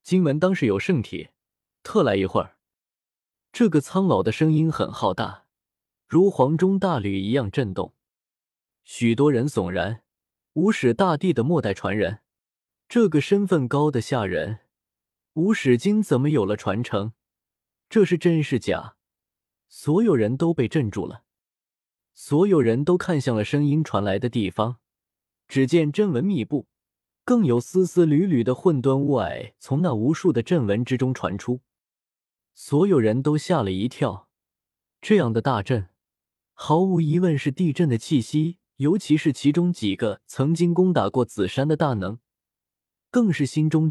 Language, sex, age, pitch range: Chinese, male, 20-39, 110-170 Hz